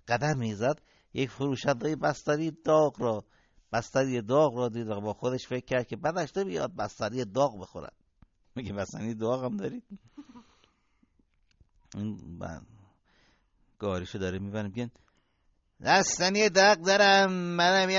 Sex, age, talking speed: male, 60-79, 125 wpm